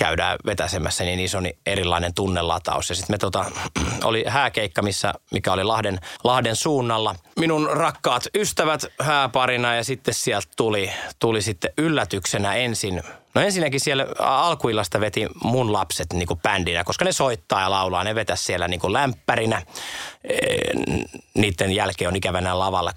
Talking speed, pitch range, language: 125 wpm, 95-125 Hz, Finnish